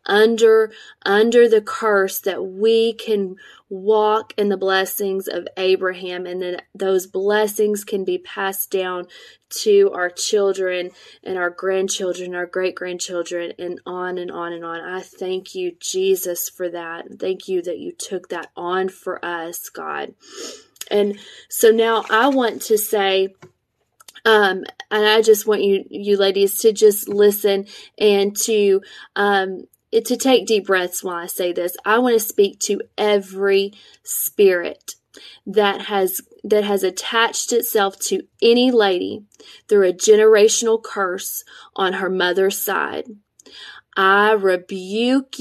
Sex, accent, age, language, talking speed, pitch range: female, American, 20-39, English, 140 wpm, 185-220 Hz